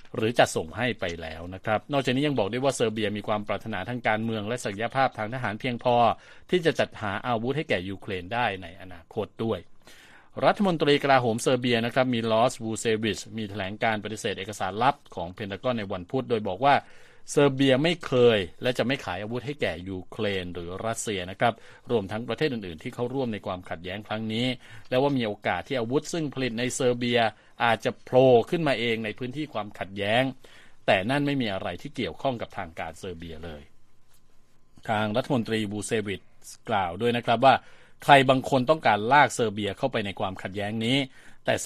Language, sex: Thai, male